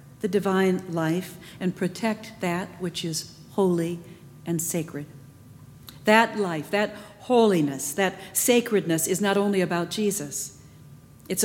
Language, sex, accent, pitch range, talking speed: English, female, American, 150-210 Hz, 120 wpm